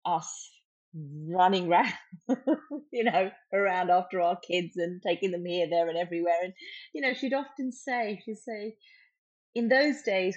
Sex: female